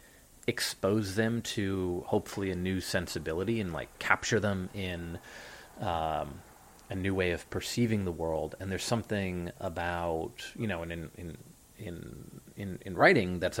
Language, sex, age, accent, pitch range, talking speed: English, male, 30-49, American, 85-105 Hz, 145 wpm